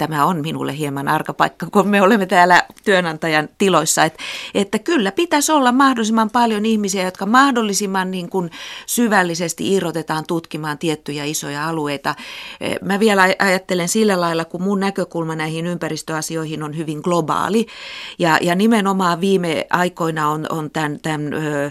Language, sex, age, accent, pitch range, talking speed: Finnish, female, 40-59, native, 150-190 Hz, 135 wpm